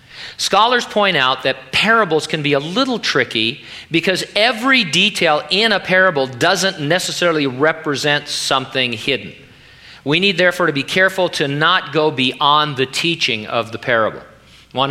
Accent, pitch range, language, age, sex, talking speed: American, 130-165 Hz, English, 40-59, male, 150 wpm